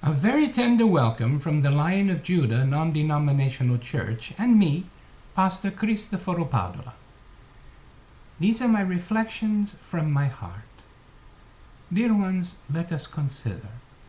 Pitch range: 115-160 Hz